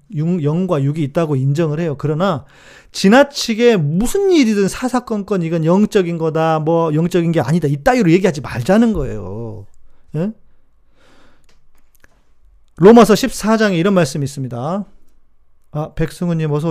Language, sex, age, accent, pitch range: Korean, male, 40-59, native, 110-175 Hz